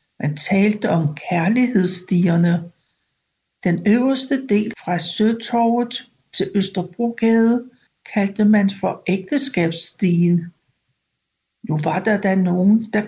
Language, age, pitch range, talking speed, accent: Danish, 60-79, 180-230 Hz, 95 wpm, native